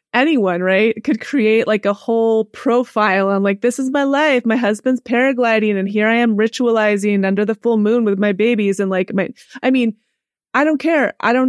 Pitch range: 185-225 Hz